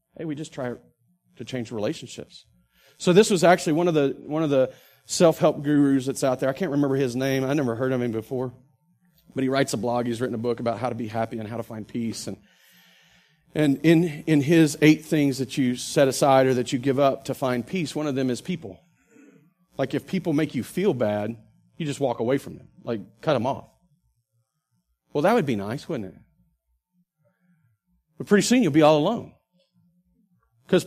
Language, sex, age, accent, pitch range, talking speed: English, male, 40-59, American, 125-180 Hz, 210 wpm